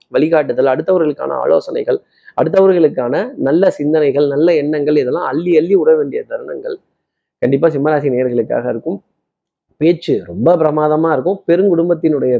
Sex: male